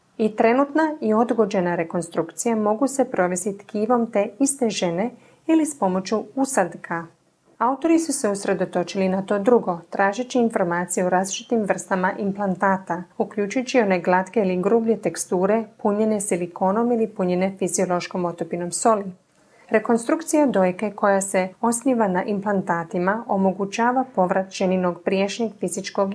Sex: female